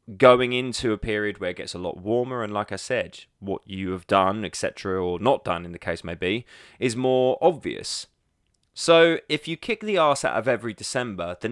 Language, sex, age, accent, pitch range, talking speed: English, male, 20-39, British, 95-130 Hz, 215 wpm